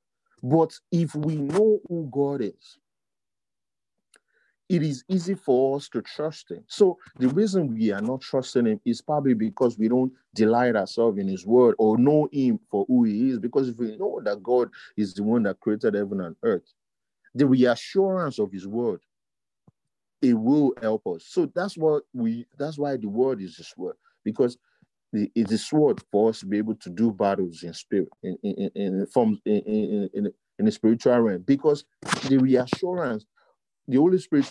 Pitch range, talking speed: 110-185 Hz, 185 wpm